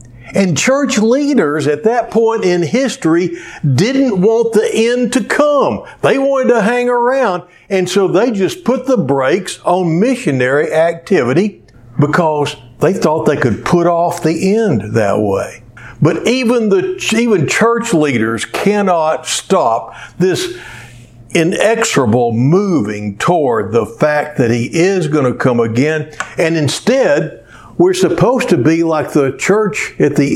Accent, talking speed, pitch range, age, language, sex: American, 140 wpm, 130-195 Hz, 60-79, English, male